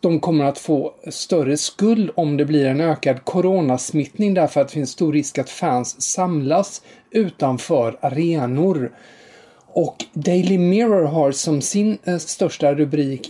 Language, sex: English, male